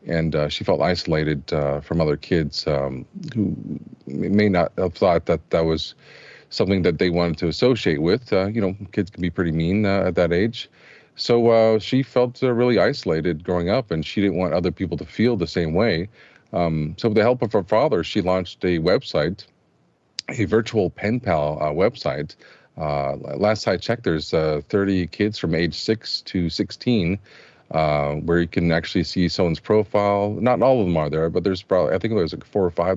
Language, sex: English, male